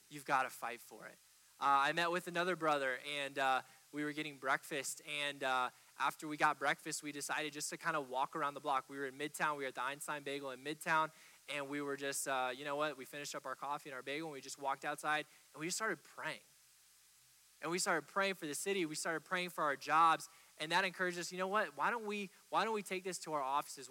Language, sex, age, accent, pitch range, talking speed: English, male, 20-39, American, 140-170 Hz, 255 wpm